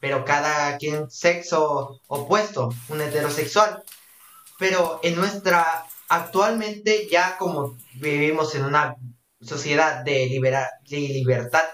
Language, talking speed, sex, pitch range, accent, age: Spanish, 105 wpm, male, 145-195 Hz, Mexican, 20-39